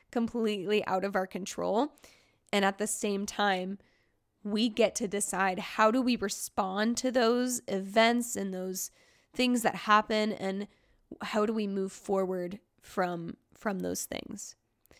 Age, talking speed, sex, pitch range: 10-29, 145 wpm, female, 190-215 Hz